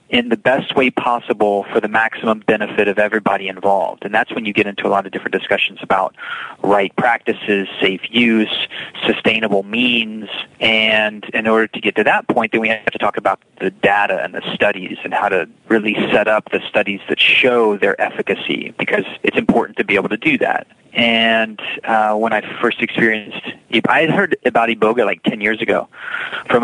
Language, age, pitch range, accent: English, 30-49, 105-120 Hz, American